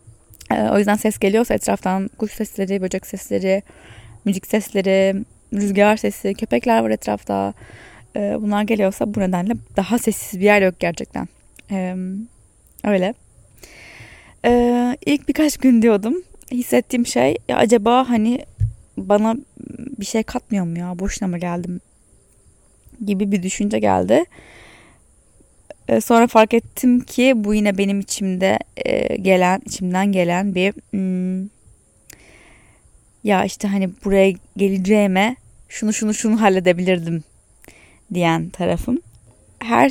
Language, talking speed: Turkish, 110 wpm